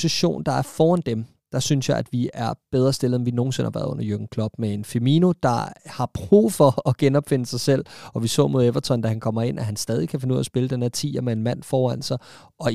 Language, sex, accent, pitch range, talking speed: Danish, male, native, 115-145 Hz, 280 wpm